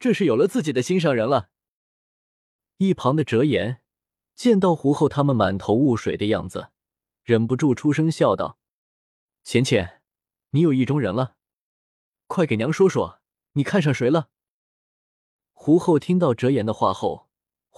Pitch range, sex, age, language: 115-160 Hz, male, 20-39, Chinese